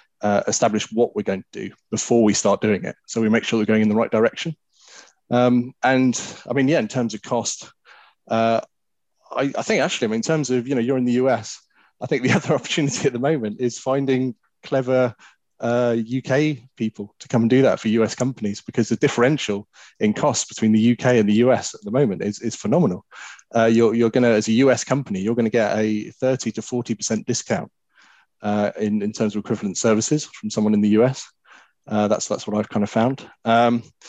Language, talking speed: English, 220 wpm